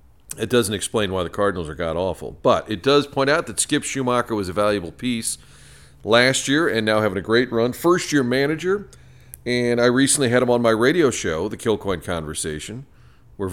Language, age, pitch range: English, 40-59, 90-130 Hz